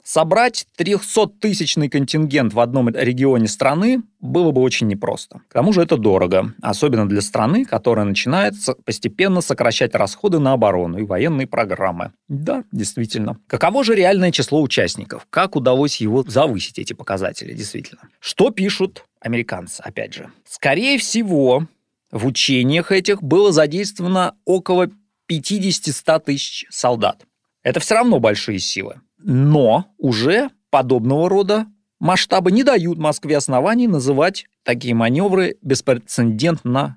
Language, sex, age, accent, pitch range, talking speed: Russian, male, 30-49, native, 125-185 Hz, 125 wpm